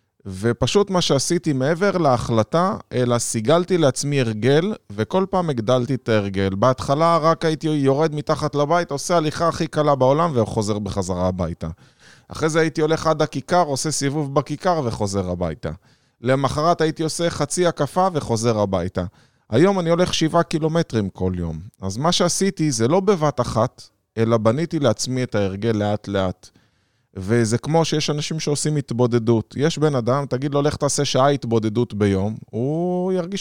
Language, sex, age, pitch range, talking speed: Hebrew, male, 20-39, 110-155 Hz, 155 wpm